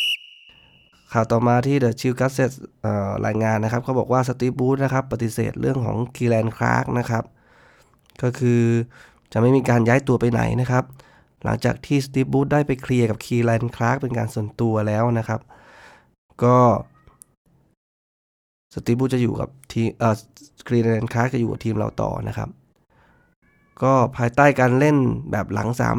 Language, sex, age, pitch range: Thai, male, 20-39, 115-130 Hz